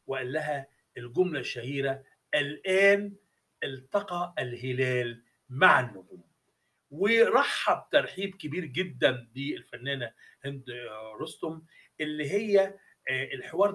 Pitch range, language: 135-190 Hz, Arabic